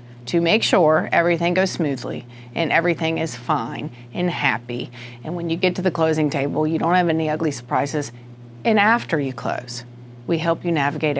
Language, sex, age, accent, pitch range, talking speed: English, female, 40-59, American, 120-175 Hz, 180 wpm